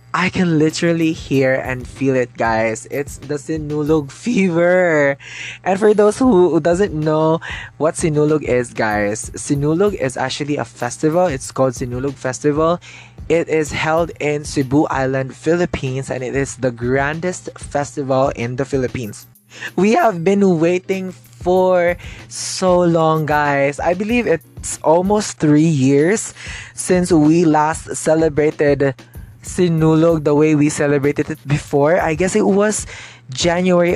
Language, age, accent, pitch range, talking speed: English, 20-39, Filipino, 130-170 Hz, 135 wpm